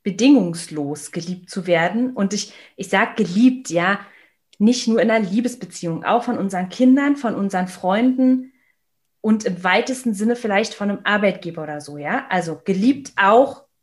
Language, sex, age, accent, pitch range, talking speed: German, female, 30-49, German, 185-240 Hz, 155 wpm